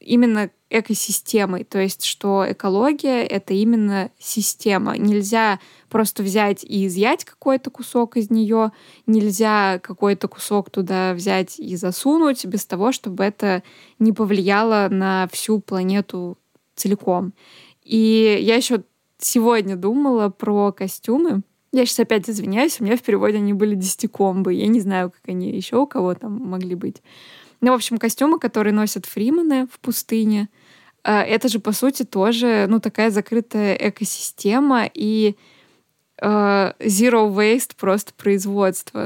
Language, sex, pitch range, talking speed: Russian, female, 195-230 Hz, 135 wpm